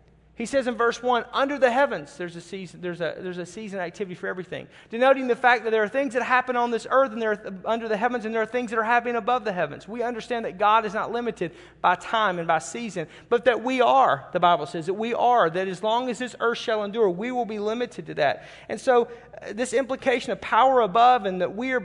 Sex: male